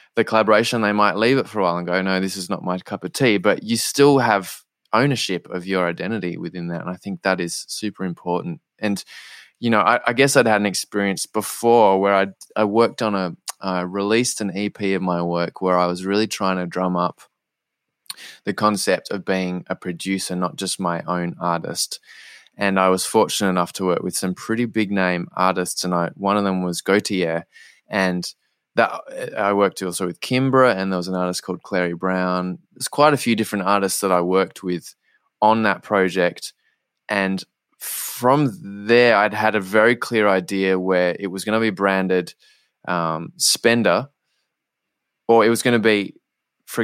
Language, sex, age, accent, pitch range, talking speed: English, male, 20-39, Australian, 90-105 Hz, 195 wpm